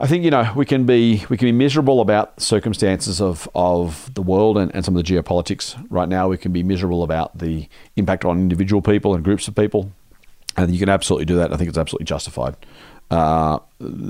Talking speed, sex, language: 215 wpm, male, English